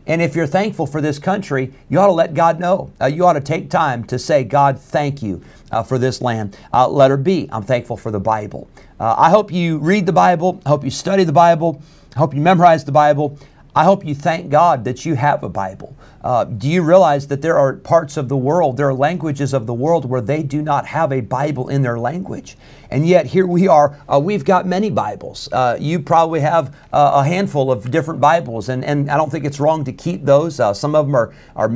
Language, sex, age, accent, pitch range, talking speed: English, male, 50-69, American, 120-155 Hz, 240 wpm